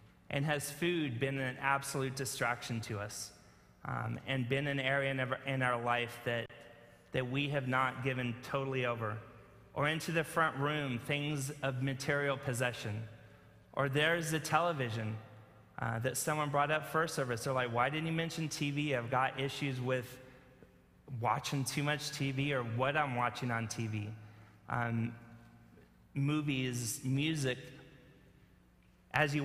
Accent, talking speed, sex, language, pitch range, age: American, 145 wpm, male, English, 120-145 Hz, 30-49